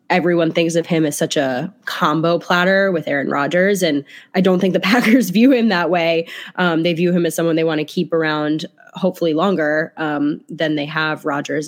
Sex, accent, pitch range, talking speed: female, American, 155-180 Hz, 205 wpm